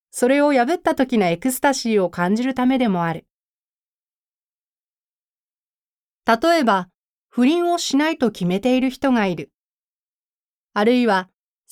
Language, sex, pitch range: Japanese, female, 200-265 Hz